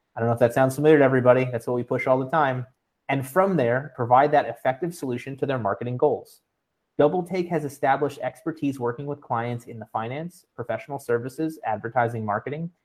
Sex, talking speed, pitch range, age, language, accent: male, 190 wpm, 120-155 Hz, 30-49, English, American